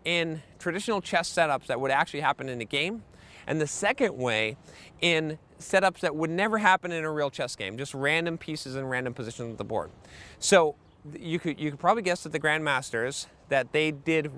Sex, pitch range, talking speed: male, 135-175 Hz, 200 wpm